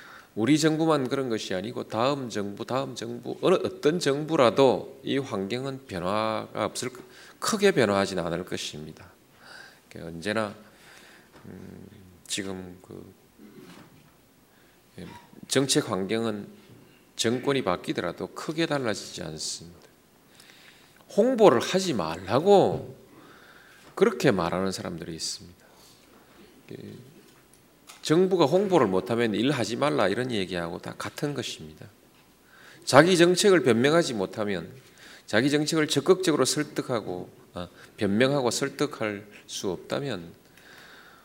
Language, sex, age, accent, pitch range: Korean, male, 40-59, native, 100-155 Hz